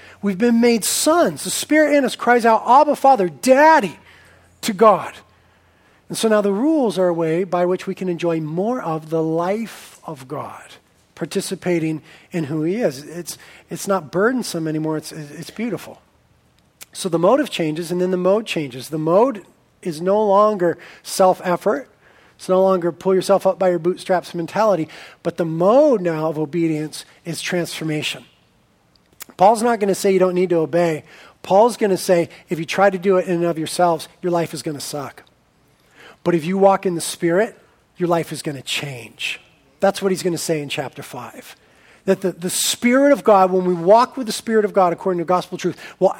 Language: English